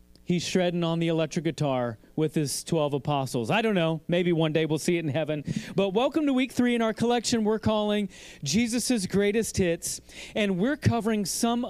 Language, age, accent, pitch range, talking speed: English, 30-49, American, 160-215 Hz, 195 wpm